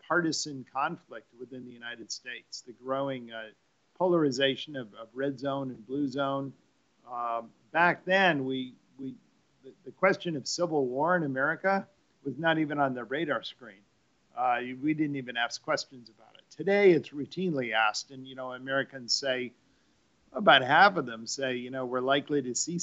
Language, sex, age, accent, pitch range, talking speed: English, male, 50-69, American, 125-145 Hz, 170 wpm